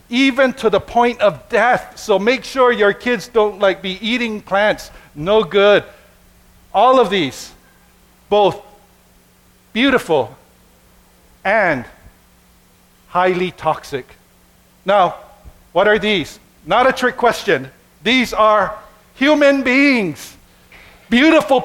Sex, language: male, English